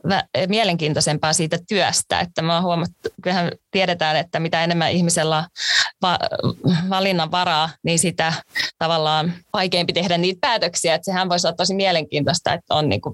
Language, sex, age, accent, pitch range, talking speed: Finnish, female, 20-39, native, 165-190 Hz, 140 wpm